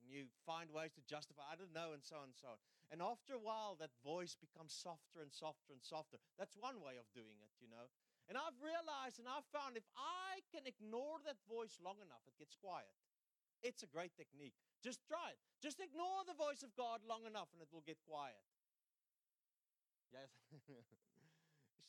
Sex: male